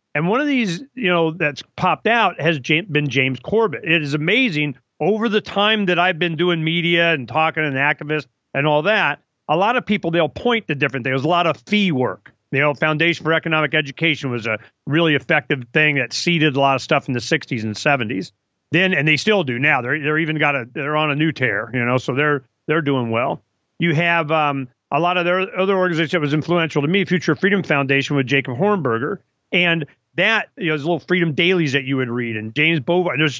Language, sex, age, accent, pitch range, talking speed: English, male, 40-59, American, 140-180 Hz, 230 wpm